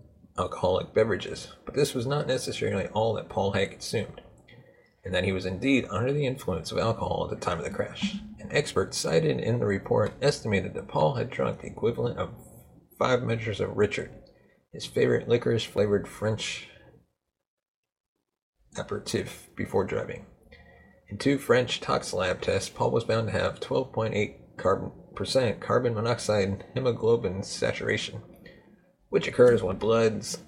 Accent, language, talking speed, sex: American, English, 145 wpm, male